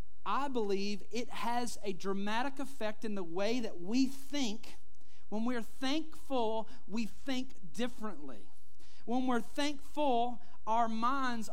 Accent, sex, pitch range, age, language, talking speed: American, male, 220-270 Hz, 40-59, English, 125 wpm